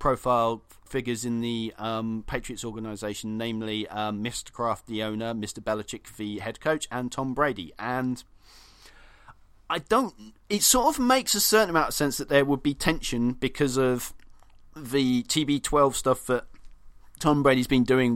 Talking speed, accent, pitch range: 160 wpm, British, 110-130 Hz